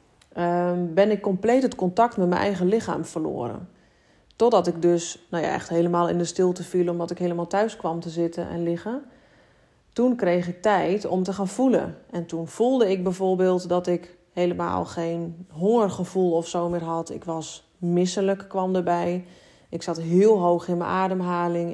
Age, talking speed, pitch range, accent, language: 30-49, 175 wpm, 175-200 Hz, Dutch, Dutch